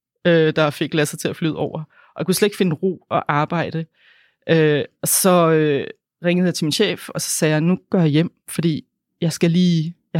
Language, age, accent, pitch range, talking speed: Danish, 30-49, native, 160-190 Hz, 205 wpm